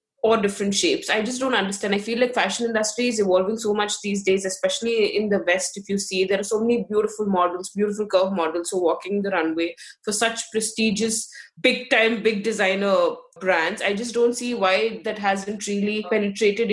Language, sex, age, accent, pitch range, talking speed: English, female, 20-39, Indian, 195-230 Hz, 200 wpm